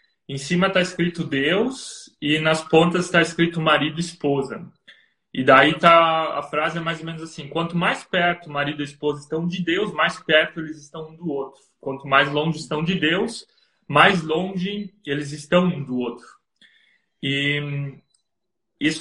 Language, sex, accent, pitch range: Portuguese, male, Brazilian, 145-180 Hz